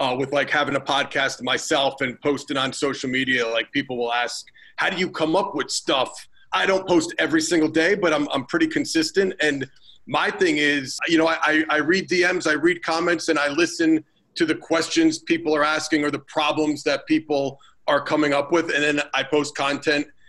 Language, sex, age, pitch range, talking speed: English, male, 40-59, 135-160 Hz, 210 wpm